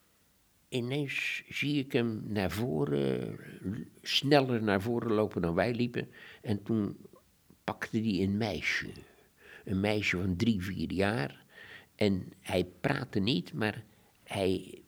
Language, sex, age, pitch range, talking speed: Dutch, male, 60-79, 90-110 Hz, 125 wpm